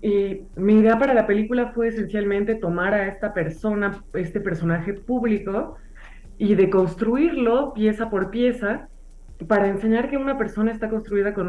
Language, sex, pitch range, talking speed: Spanish, female, 170-225 Hz, 145 wpm